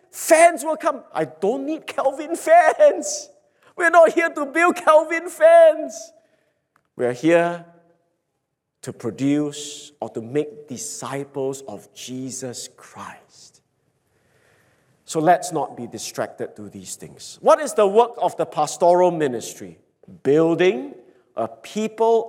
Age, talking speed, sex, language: 50-69, 120 wpm, male, English